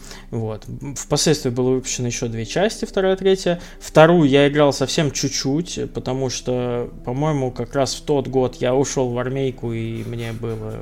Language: Russian